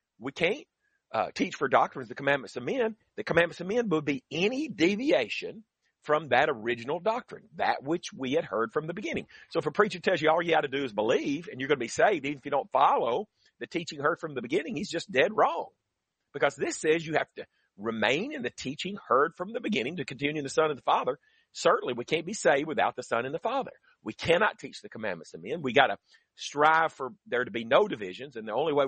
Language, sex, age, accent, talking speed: English, male, 40-59, American, 245 wpm